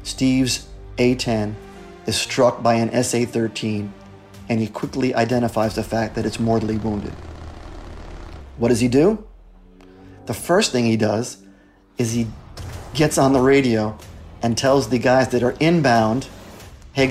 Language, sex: English, male